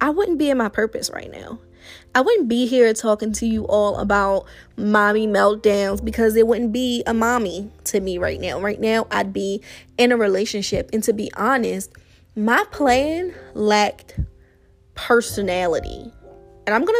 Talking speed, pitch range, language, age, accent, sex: 165 wpm, 205-255 Hz, English, 20-39, American, female